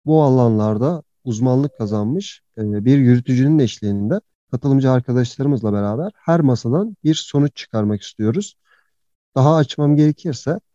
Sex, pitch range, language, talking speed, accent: male, 110-140 Hz, Turkish, 105 wpm, native